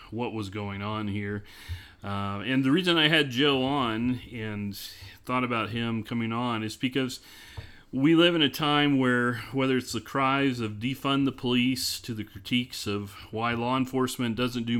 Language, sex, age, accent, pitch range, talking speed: English, male, 40-59, American, 105-125 Hz, 180 wpm